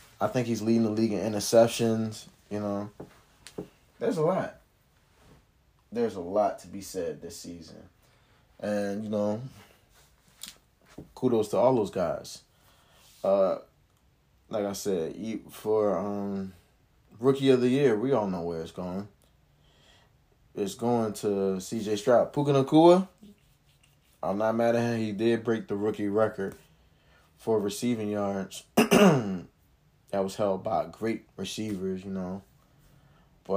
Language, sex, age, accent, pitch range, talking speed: English, male, 20-39, American, 95-115 Hz, 135 wpm